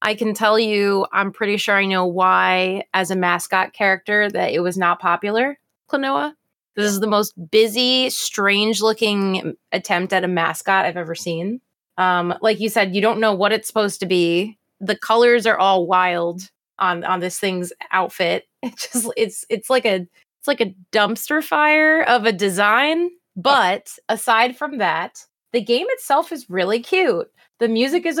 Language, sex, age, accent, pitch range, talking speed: English, female, 20-39, American, 190-245 Hz, 175 wpm